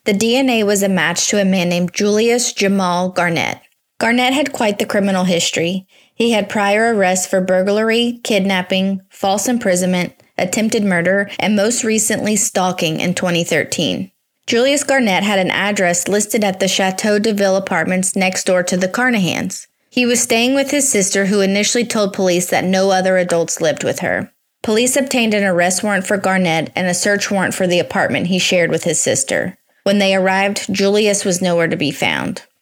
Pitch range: 185-230 Hz